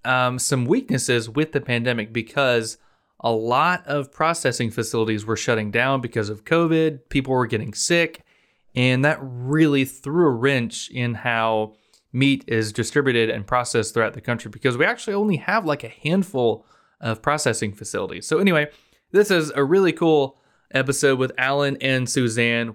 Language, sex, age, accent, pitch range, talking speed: English, male, 20-39, American, 120-155 Hz, 160 wpm